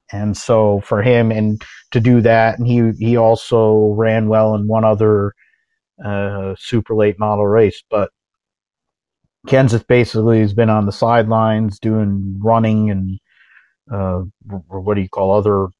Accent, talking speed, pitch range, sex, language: American, 150 wpm, 105-120 Hz, male, English